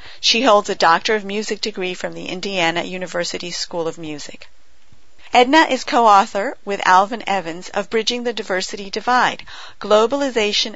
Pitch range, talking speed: 185-230 Hz, 145 wpm